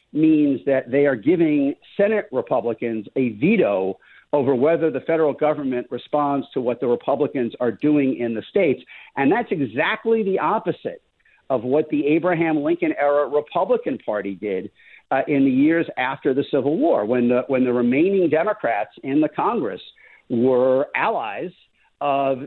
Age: 50-69